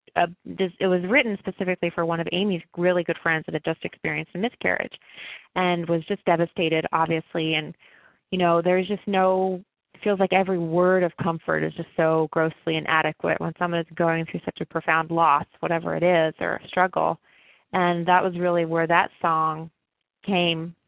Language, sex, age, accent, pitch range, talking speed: English, female, 20-39, American, 165-185 Hz, 180 wpm